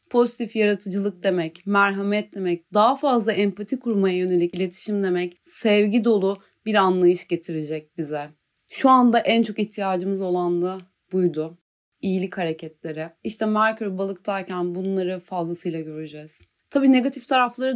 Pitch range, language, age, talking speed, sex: 175-225 Hz, Turkish, 30-49, 125 wpm, female